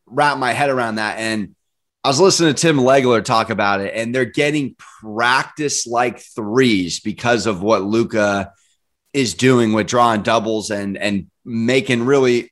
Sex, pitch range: male, 115-145 Hz